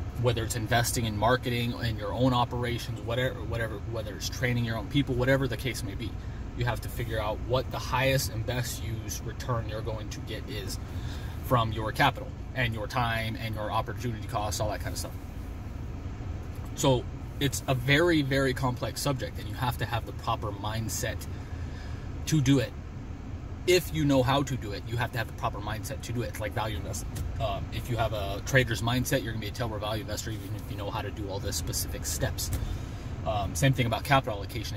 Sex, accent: male, American